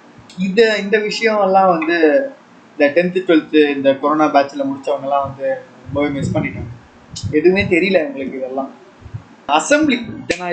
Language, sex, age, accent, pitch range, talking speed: Tamil, male, 20-39, native, 150-205 Hz, 120 wpm